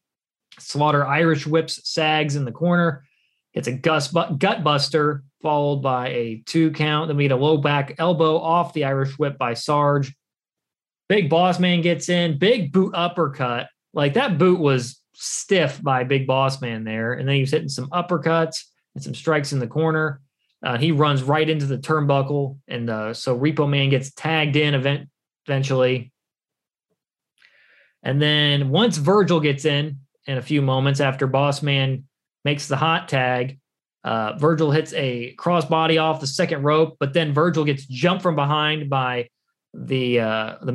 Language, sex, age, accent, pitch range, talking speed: English, male, 20-39, American, 135-160 Hz, 170 wpm